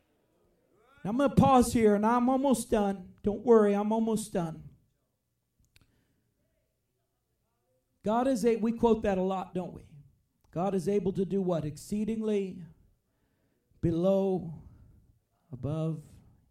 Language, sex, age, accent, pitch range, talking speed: English, male, 40-59, American, 140-225 Hz, 115 wpm